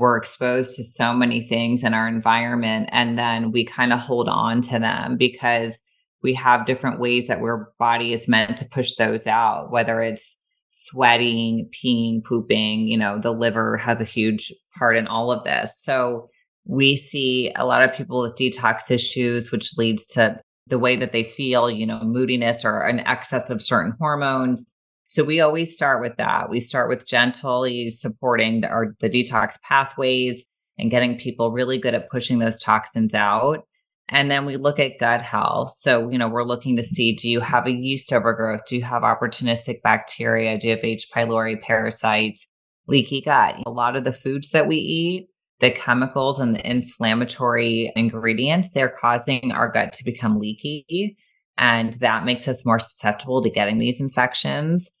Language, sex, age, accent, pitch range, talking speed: English, female, 30-49, American, 115-130 Hz, 180 wpm